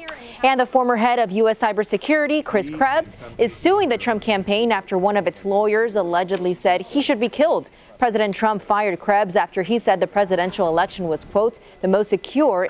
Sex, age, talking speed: female, 20-39, 190 wpm